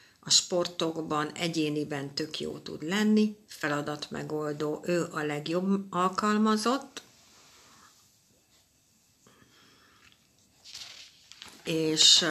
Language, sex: Hungarian, female